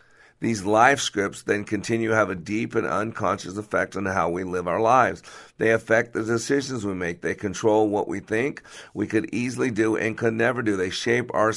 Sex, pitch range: male, 100-115 Hz